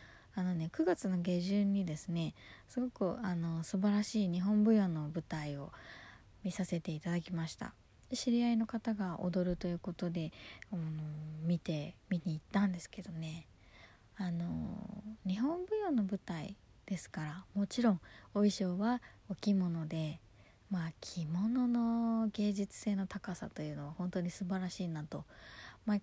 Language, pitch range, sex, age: Japanese, 165-210 Hz, female, 20-39